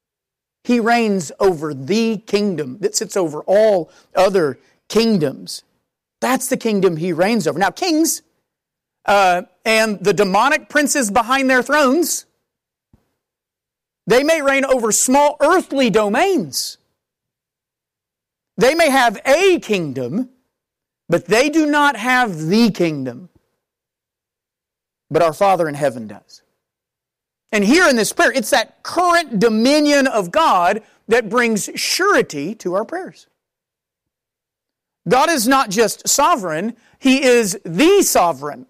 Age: 40-59